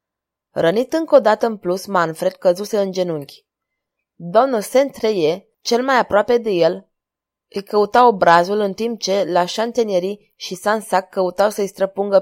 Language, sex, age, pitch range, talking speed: Romanian, female, 20-39, 185-230 Hz, 145 wpm